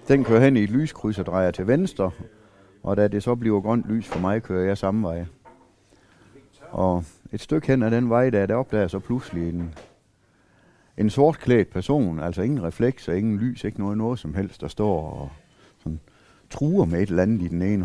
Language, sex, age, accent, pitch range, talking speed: Danish, male, 60-79, native, 90-115 Hz, 210 wpm